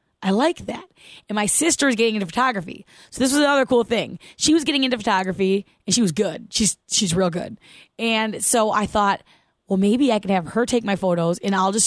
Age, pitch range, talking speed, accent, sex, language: 20-39, 200-255 Hz, 220 wpm, American, female, English